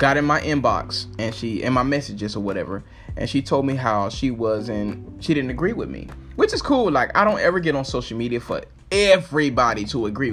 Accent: American